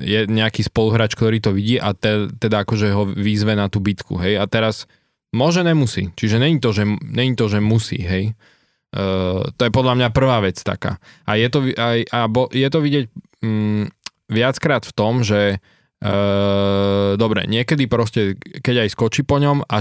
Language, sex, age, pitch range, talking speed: Slovak, male, 20-39, 100-120 Hz, 185 wpm